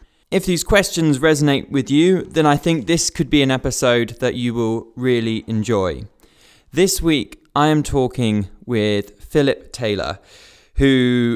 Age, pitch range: 20-39, 120-150 Hz